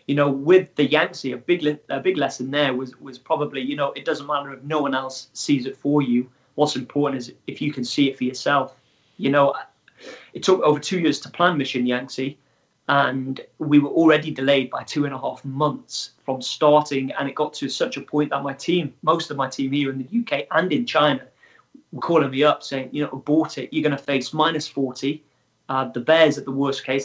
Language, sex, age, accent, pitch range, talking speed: English, male, 20-39, British, 135-150 Hz, 230 wpm